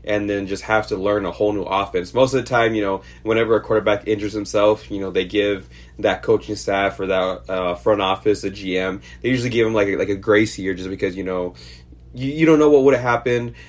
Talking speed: 245 wpm